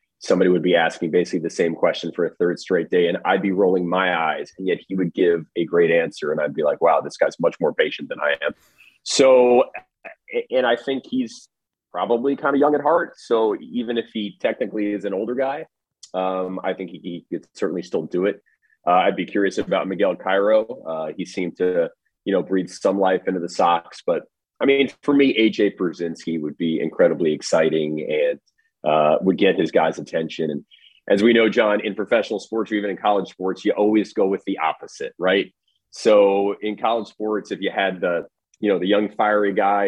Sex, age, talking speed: male, 30-49, 210 wpm